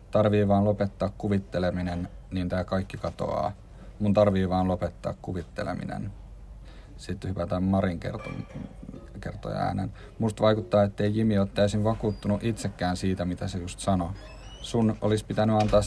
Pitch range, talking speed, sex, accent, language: 95-105 Hz, 135 wpm, male, native, Finnish